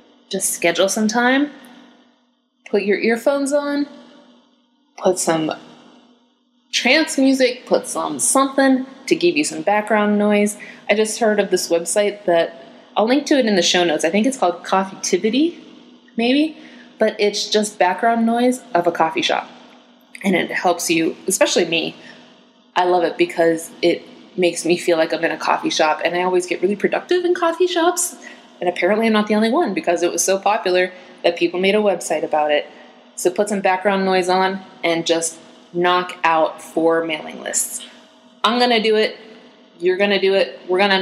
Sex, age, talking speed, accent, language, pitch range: female, 20-39, 180 wpm, American, English, 180-250 Hz